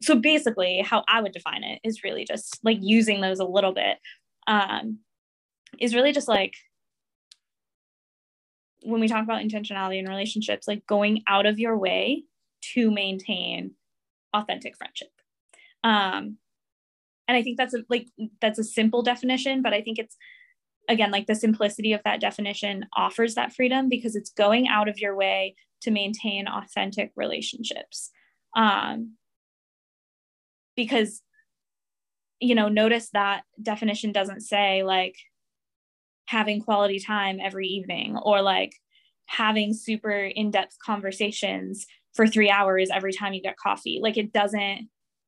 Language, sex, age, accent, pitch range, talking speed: English, female, 10-29, American, 200-230 Hz, 140 wpm